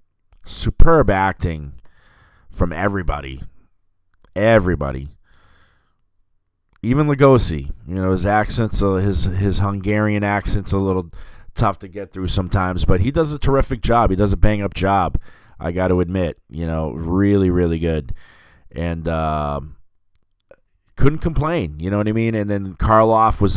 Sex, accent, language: male, American, English